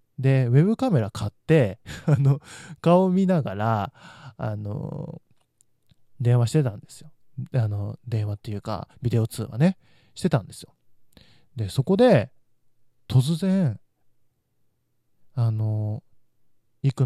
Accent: native